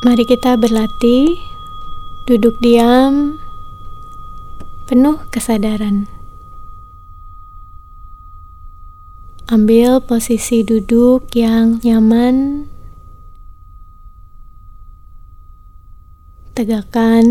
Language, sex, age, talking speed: Indonesian, female, 20-39, 45 wpm